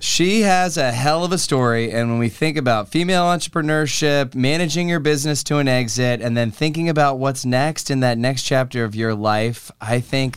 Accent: American